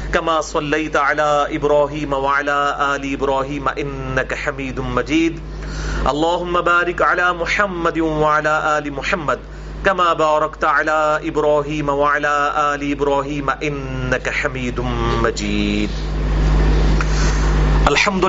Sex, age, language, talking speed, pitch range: male, 40-59, English, 90 wpm, 140-165 Hz